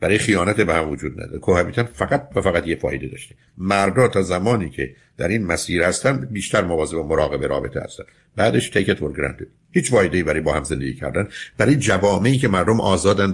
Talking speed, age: 195 wpm, 50-69